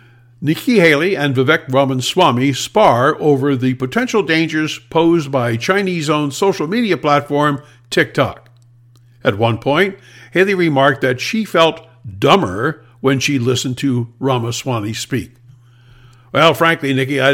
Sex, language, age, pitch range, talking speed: male, English, 60-79, 120-155 Hz, 130 wpm